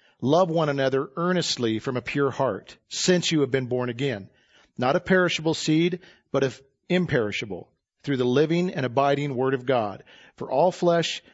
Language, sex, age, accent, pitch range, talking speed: English, male, 40-59, American, 125-160 Hz, 170 wpm